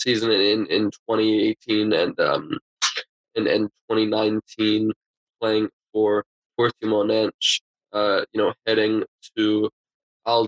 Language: English